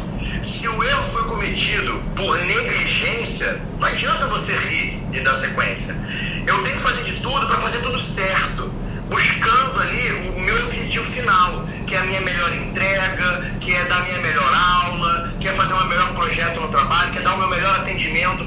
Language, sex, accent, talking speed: Portuguese, male, Brazilian, 190 wpm